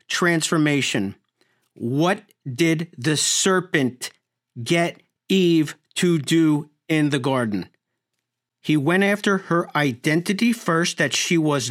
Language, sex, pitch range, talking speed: English, male, 135-185 Hz, 110 wpm